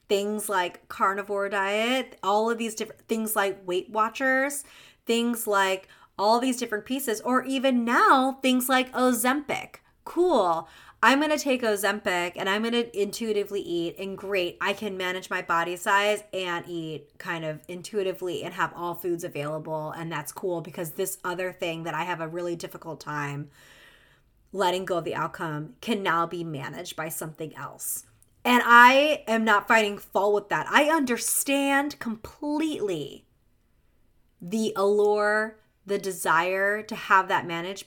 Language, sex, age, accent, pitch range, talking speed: English, female, 30-49, American, 175-230 Hz, 155 wpm